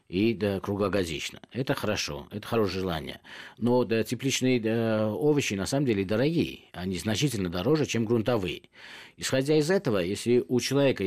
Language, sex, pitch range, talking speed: Russian, male, 100-135 Hz, 140 wpm